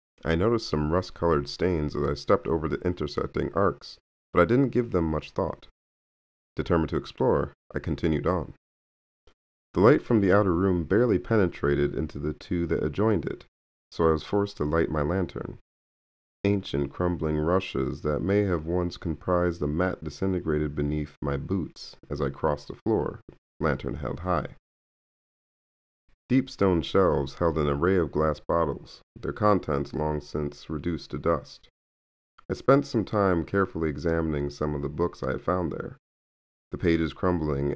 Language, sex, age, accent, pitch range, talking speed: English, male, 40-59, American, 70-90 Hz, 160 wpm